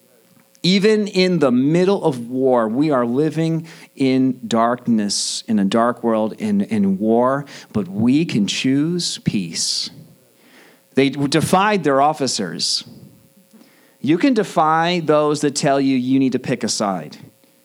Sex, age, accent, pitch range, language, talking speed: male, 40-59, American, 125-175 Hz, English, 135 wpm